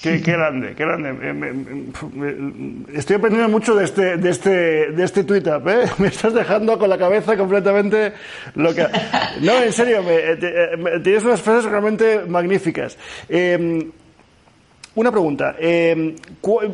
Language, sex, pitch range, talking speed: Spanish, male, 160-195 Hz, 155 wpm